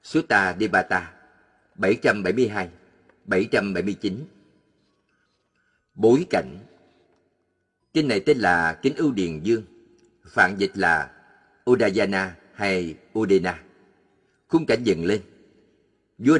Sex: male